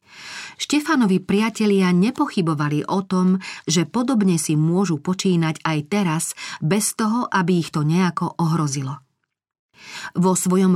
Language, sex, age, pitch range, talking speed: Slovak, female, 40-59, 160-195 Hz, 115 wpm